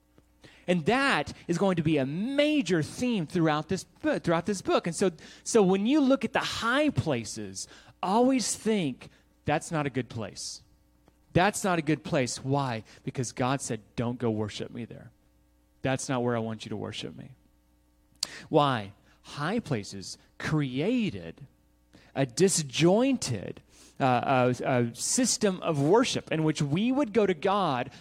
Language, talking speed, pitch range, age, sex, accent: English, 160 wpm, 125-200 Hz, 30-49, male, American